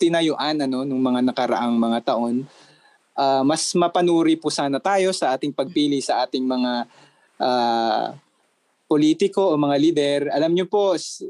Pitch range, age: 135-175 Hz, 20-39